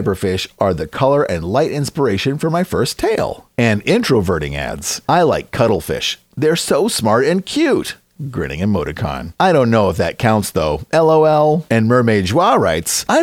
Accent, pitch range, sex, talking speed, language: American, 100-160 Hz, male, 170 wpm, English